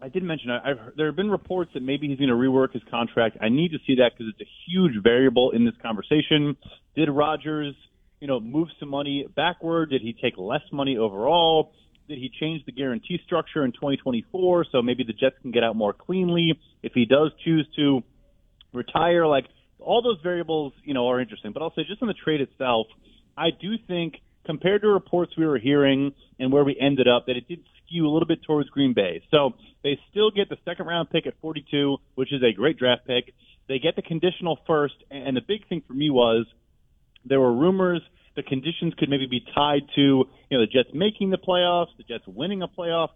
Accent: American